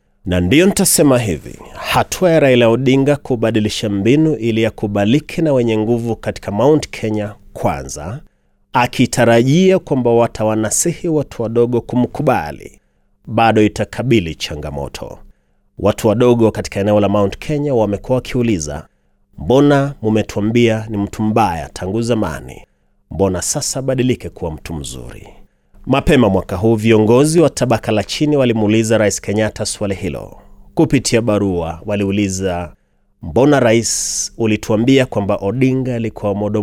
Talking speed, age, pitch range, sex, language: 120 wpm, 30-49, 95-120 Hz, male, Swahili